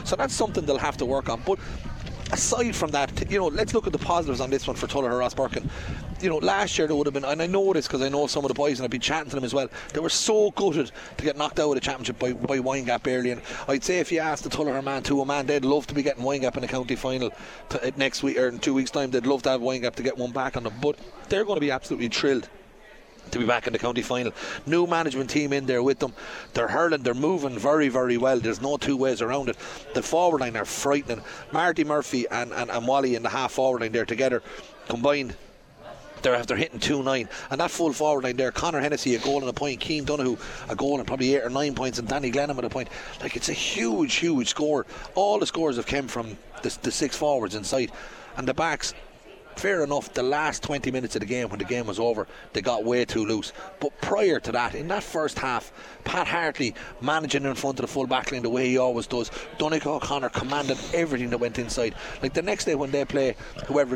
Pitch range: 125-145 Hz